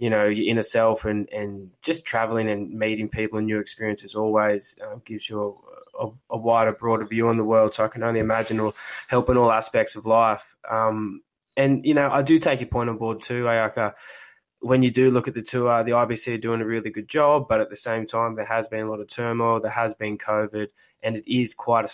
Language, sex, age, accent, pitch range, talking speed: English, male, 20-39, Australian, 110-120 Hz, 235 wpm